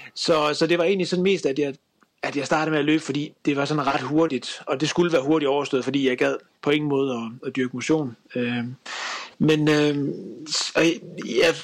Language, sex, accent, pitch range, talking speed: Danish, male, native, 140-175 Hz, 215 wpm